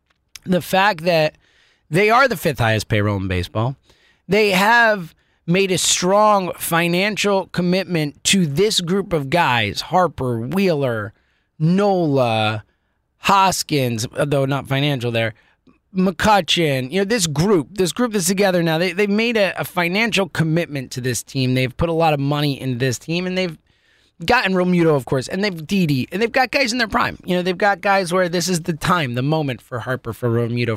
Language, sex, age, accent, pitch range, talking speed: English, male, 20-39, American, 130-195 Hz, 180 wpm